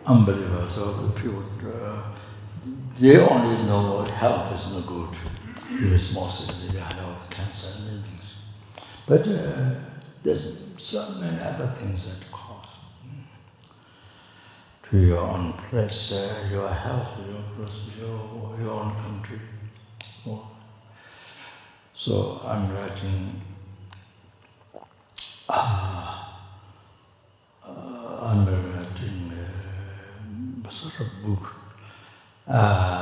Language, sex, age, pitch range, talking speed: English, male, 60-79, 95-110 Hz, 100 wpm